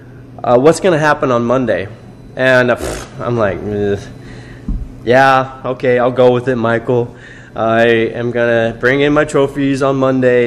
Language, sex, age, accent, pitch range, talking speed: English, male, 20-39, American, 115-130 Hz, 160 wpm